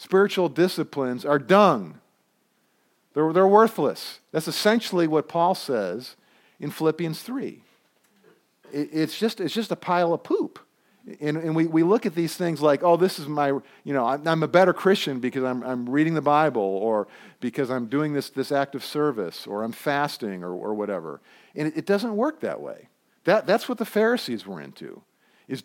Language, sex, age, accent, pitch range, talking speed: English, male, 50-69, American, 140-195 Hz, 180 wpm